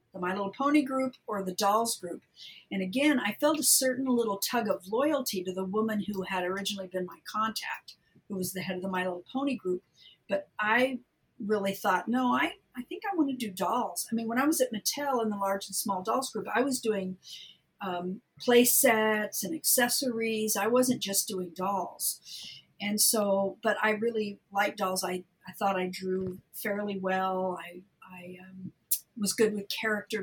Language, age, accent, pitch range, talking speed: English, 50-69, American, 185-220 Hz, 195 wpm